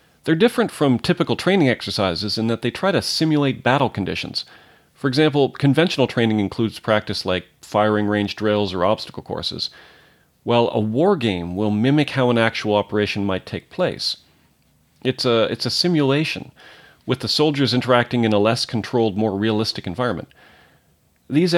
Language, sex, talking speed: English, male, 155 wpm